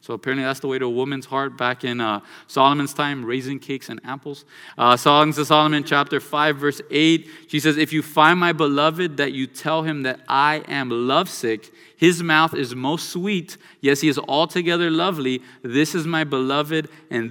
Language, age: English, 30-49